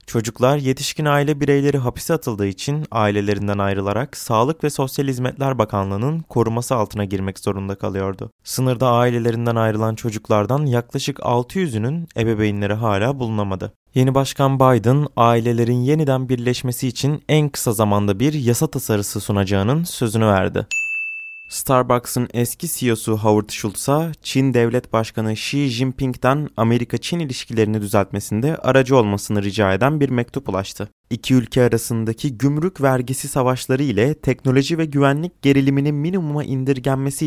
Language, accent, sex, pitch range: Turkish, native, male, 110-145 Hz